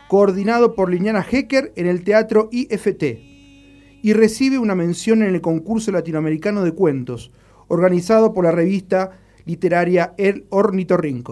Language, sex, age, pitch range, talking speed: Spanish, male, 40-59, 155-220 Hz, 135 wpm